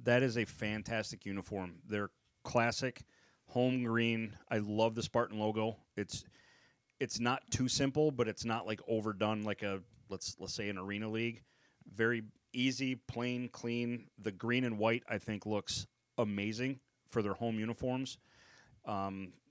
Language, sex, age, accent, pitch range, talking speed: English, male, 40-59, American, 100-120 Hz, 150 wpm